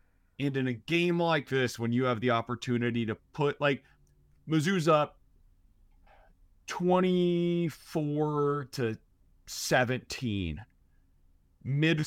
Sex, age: male, 30-49